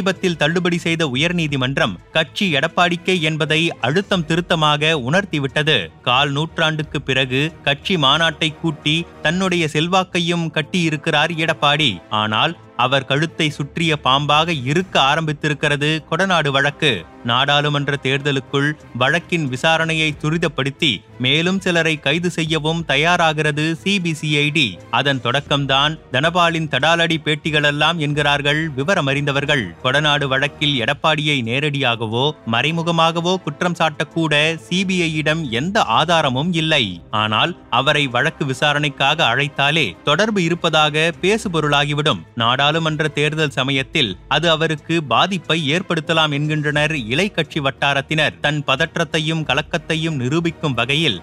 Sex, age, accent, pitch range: male, 30-49, native, 145-165 Hz